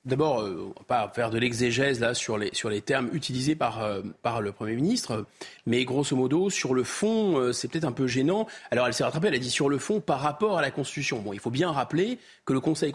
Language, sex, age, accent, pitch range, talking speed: French, male, 30-49, French, 130-170 Hz, 255 wpm